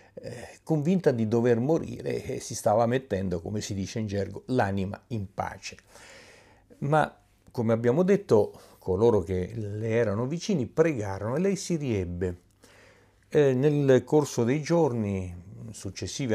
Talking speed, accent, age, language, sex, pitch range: 130 wpm, native, 50-69, Italian, male, 100-135 Hz